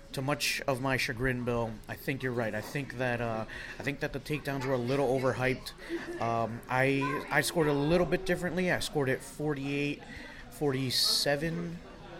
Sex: male